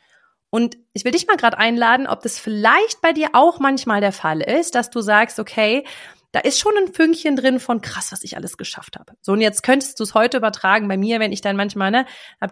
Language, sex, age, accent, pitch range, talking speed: German, female, 30-49, German, 195-250 Hz, 240 wpm